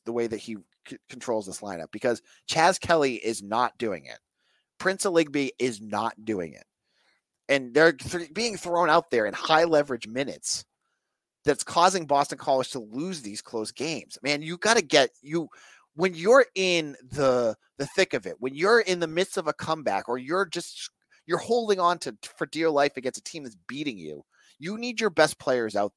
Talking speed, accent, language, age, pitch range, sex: 195 wpm, American, English, 30-49, 130-185 Hz, male